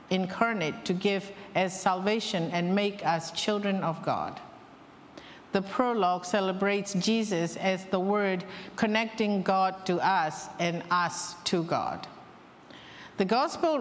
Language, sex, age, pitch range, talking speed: English, female, 50-69, 185-225 Hz, 120 wpm